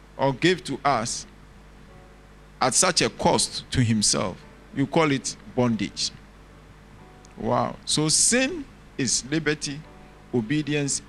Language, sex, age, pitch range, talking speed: English, male, 50-69, 115-170 Hz, 110 wpm